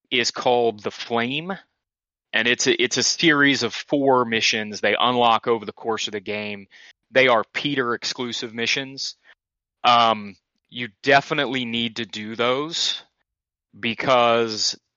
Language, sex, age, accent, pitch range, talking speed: English, male, 30-49, American, 105-130 Hz, 130 wpm